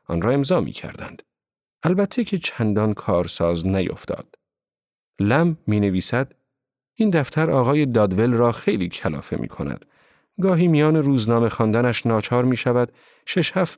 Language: Persian